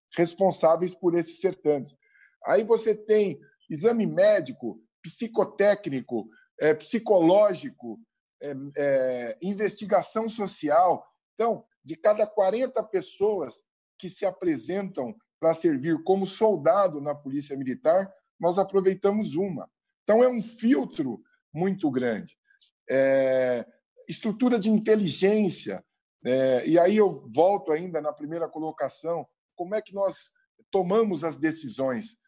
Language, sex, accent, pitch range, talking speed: Portuguese, male, Brazilian, 155-220 Hz, 100 wpm